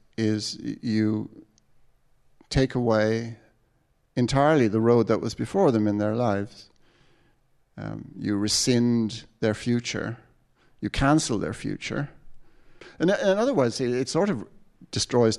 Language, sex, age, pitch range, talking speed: English, male, 50-69, 105-125 Hz, 120 wpm